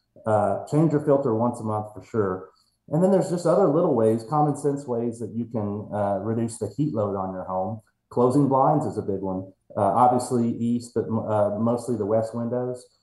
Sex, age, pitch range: male, 30-49, 105-130 Hz